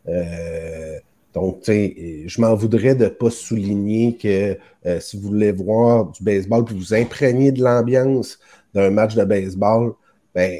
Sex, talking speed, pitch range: male, 145 wpm, 95-120 Hz